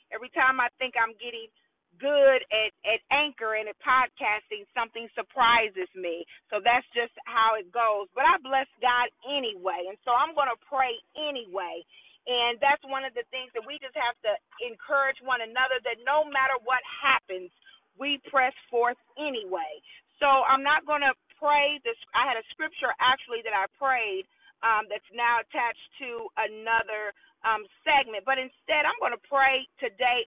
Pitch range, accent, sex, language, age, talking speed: 230-295 Hz, American, female, English, 40-59, 170 wpm